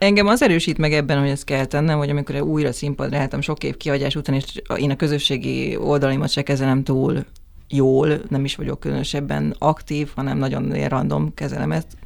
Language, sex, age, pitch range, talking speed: English, female, 30-49, 135-155 Hz, 185 wpm